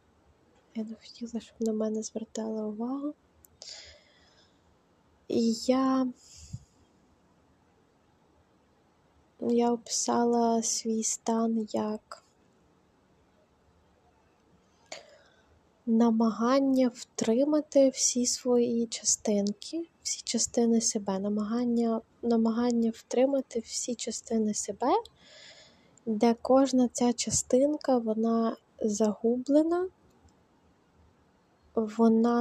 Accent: native